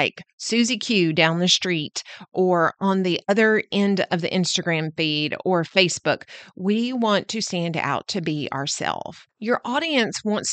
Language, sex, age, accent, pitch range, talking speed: English, female, 40-59, American, 175-230 Hz, 160 wpm